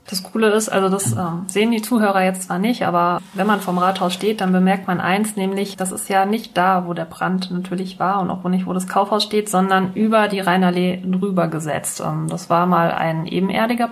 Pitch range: 180-210 Hz